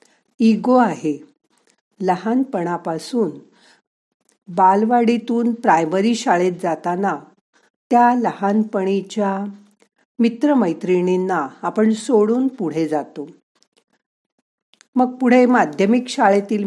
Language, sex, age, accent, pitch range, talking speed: Marathi, female, 50-69, native, 165-235 Hz, 65 wpm